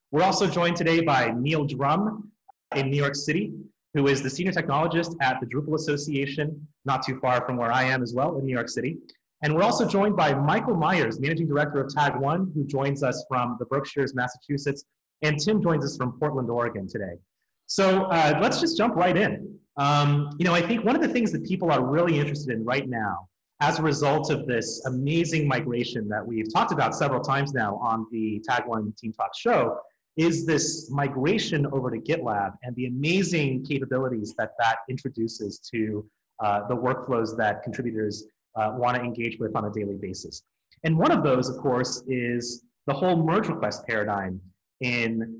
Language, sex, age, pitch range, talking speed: English, male, 30-49, 120-155 Hz, 190 wpm